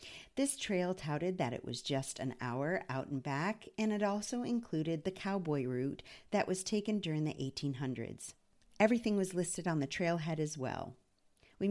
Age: 50-69